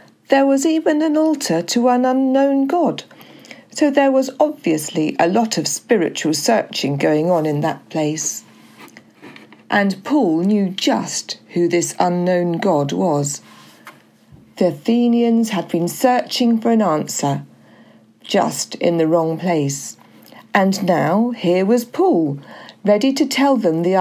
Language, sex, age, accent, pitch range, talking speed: English, female, 50-69, British, 165-255 Hz, 135 wpm